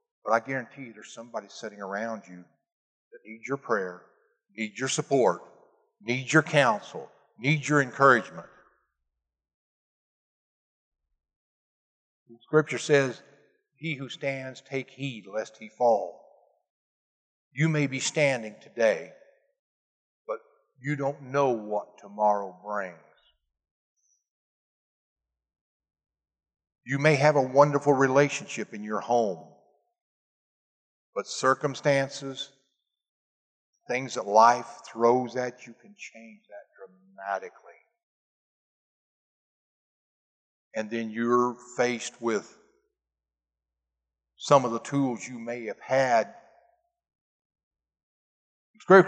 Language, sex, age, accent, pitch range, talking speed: English, male, 50-69, American, 95-140 Hz, 95 wpm